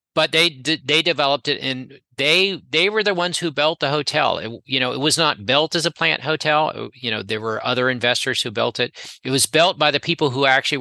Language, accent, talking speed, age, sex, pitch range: English, American, 245 wpm, 40-59, male, 115-150 Hz